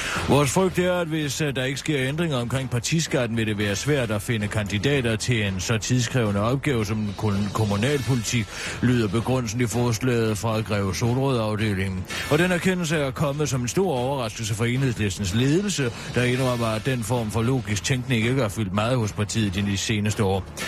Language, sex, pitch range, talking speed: Danish, male, 105-140 Hz, 175 wpm